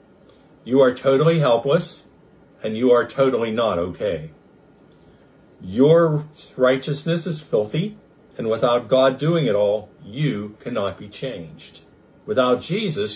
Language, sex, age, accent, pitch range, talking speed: English, male, 50-69, American, 110-150 Hz, 120 wpm